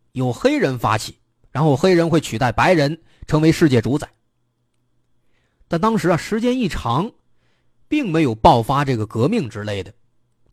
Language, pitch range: Chinese, 115-170 Hz